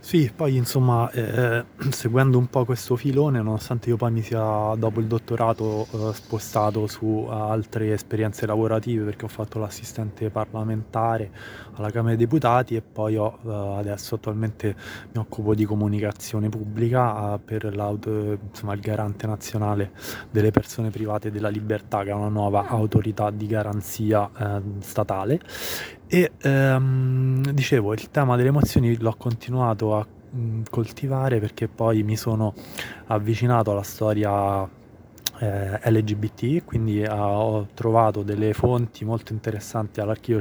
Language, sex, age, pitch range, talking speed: Italian, male, 20-39, 105-115 Hz, 130 wpm